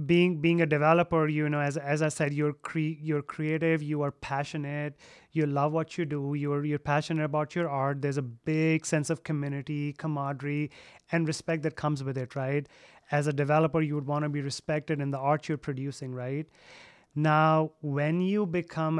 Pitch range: 145-165 Hz